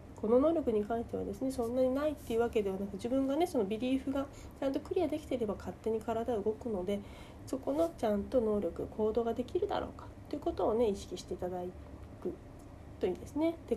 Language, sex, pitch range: Japanese, female, 205-285 Hz